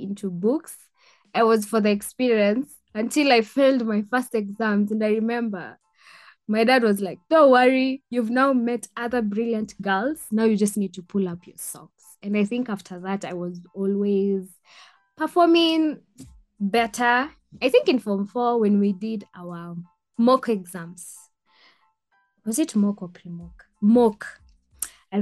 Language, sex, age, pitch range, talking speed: English, female, 20-39, 195-245 Hz, 155 wpm